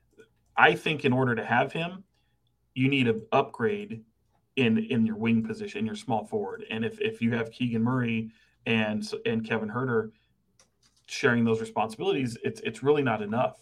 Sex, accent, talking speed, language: male, American, 170 wpm, English